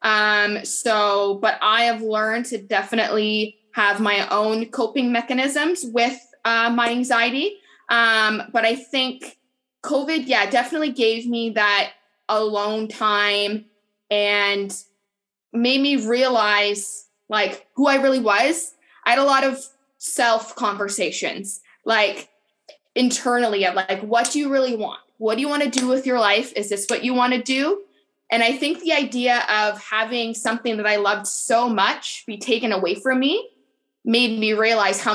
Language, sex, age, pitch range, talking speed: English, female, 20-39, 205-255 Hz, 155 wpm